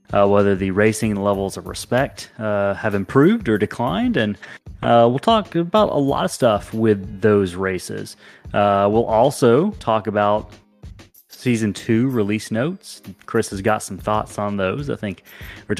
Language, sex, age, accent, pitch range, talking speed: English, male, 30-49, American, 100-120 Hz, 165 wpm